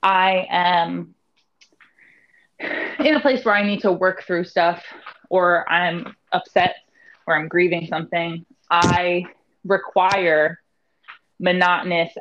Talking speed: 110 wpm